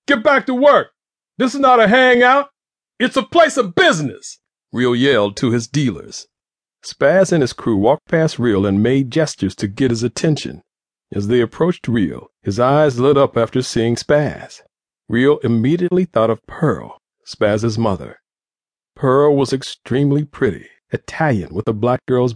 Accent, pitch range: American, 110-150 Hz